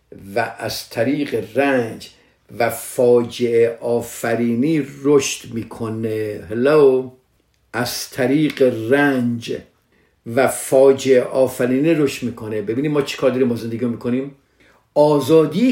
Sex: male